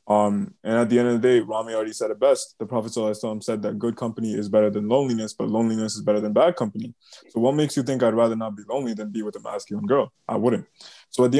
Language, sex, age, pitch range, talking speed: English, male, 20-39, 110-130 Hz, 270 wpm